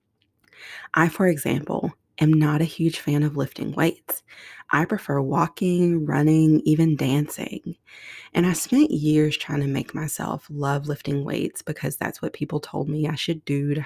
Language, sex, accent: English, female, American